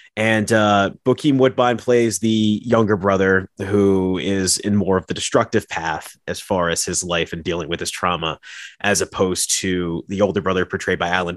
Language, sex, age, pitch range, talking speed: English, male, 30-49, 90-110 Hz, 185 wpm